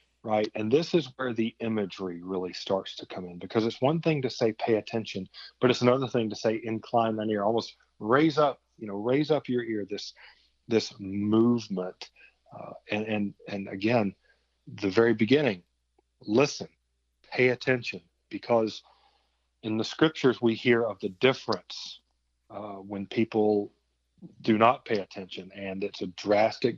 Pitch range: 100-120 Hz